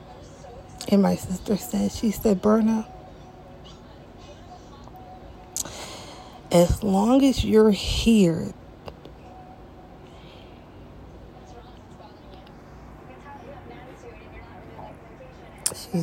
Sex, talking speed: female, 50 wpm